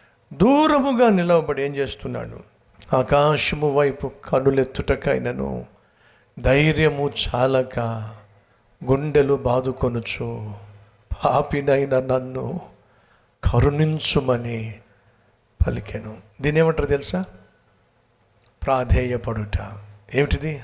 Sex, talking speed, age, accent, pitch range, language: male, 60 wpm, 60-79, native, 120-155 Hz, Telugu